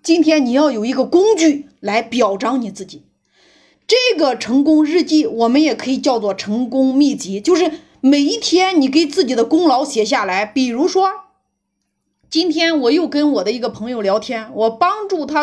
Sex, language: female, Chinese